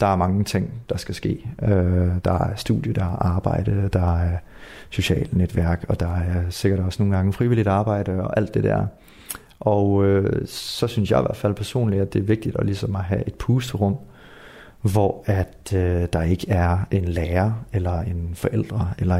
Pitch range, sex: 90-110 Hz, male